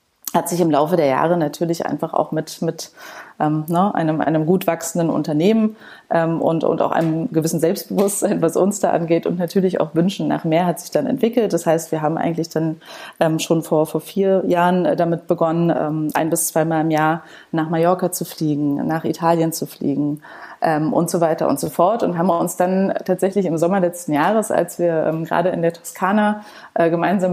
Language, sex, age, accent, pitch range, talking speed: German, female, 30-49, German, 160-185 Hz, 200 wpm